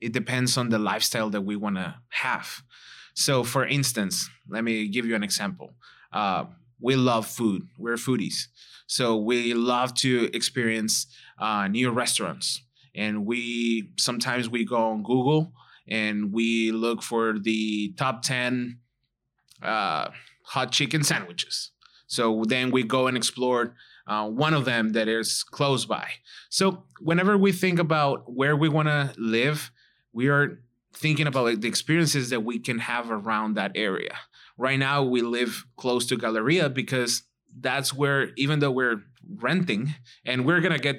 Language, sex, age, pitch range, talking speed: English, male, 20-39, 115-140 Hz, 155 wpm